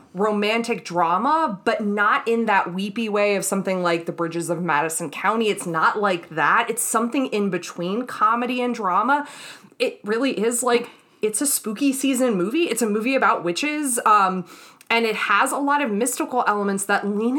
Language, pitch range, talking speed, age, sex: English, 190-265 Hz, 180 wpm, 20-39, female